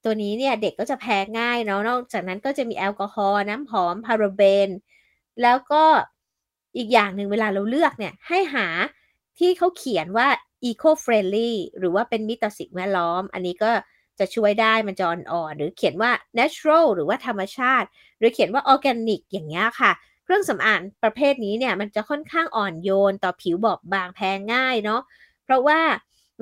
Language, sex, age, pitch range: Thai, female, 20-39, 205-275 Hz